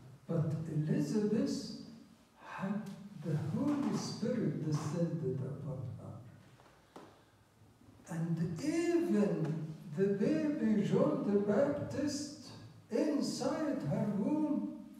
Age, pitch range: 60-79, 145-205 Hz